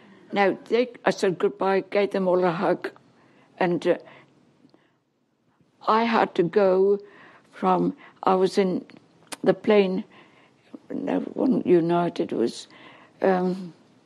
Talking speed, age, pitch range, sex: 115 wpm, 60-79, 185-230 Hz, female